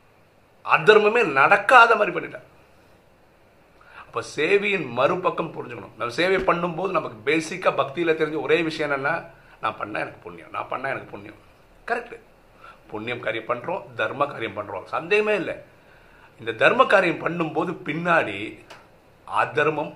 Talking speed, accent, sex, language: 45 wpm, native, male, Tamil